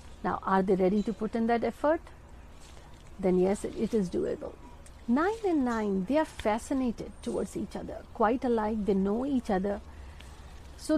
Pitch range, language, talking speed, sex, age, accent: 200-265 Hz, Hindi, 170 wpm, female, 50-69, native